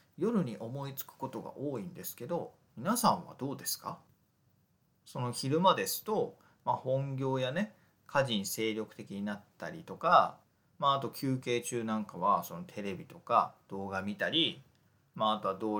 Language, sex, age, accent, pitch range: Japanese, male, 40-59, native, 110-170 Hz